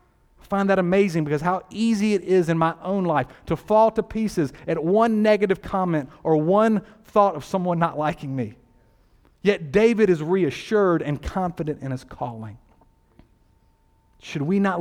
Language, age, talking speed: English, 40-59, 160 wpm